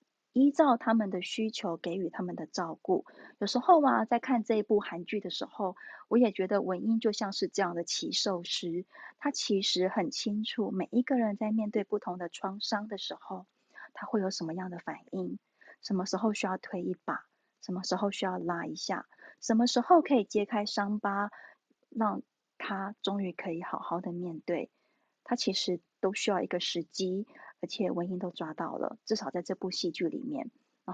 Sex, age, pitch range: female, 30-49, 185-230 Hz